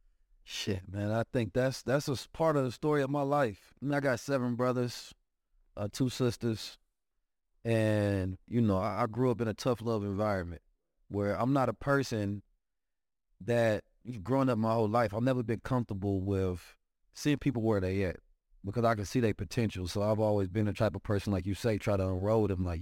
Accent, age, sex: American, 30-49, male